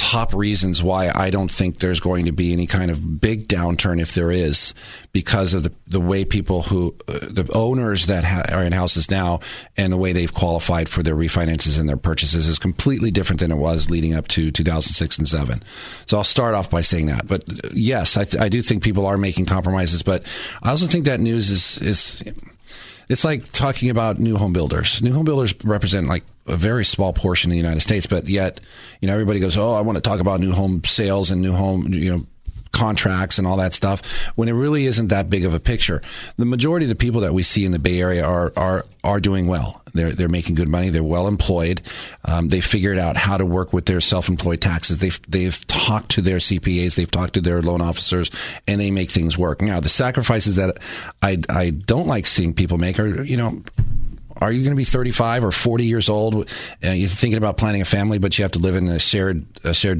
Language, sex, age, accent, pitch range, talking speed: English, male, 40-59, American, 85-105 Hz, 230 wpm